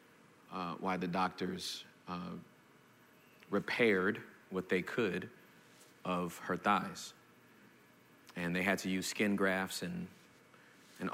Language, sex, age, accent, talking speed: English, male, 40-59, American, 115 wpm